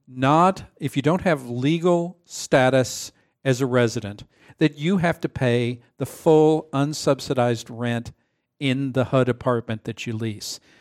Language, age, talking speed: English, 50-69, 145 wpm